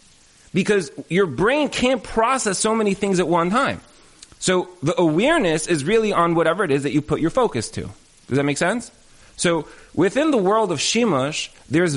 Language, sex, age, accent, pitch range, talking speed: English, male, 30-49, American, 140-180 Hz, 185 wpm